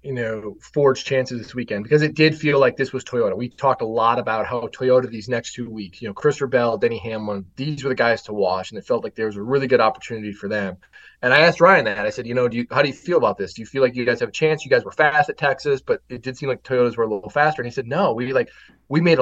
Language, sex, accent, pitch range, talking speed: English, male, American, 115-145 Hz, 310 wpm